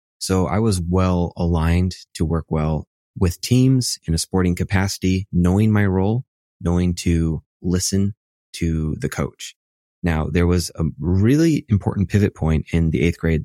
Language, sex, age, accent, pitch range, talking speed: English, male, 20-39, American, 80-95 Hz, 155 wpm